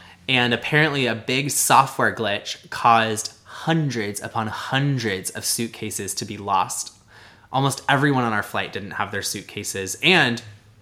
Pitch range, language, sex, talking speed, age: 100-130 Hz, English, male, 140 wpm, 20-39